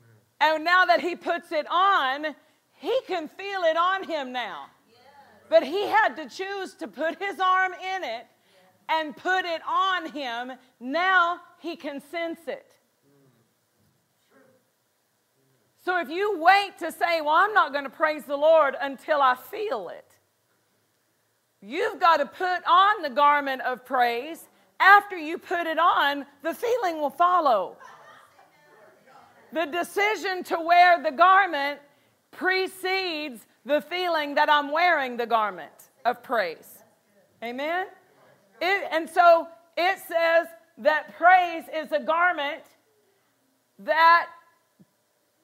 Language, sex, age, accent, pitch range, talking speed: English, female, 50-69, American, 280-360 Hz, 130 wpm